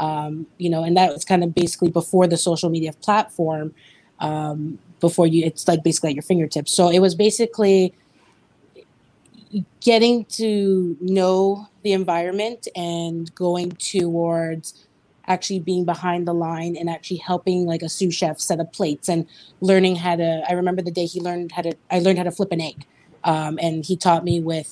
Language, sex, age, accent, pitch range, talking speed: English, female, 30-49, American, 165-185 Hz, 180 wpm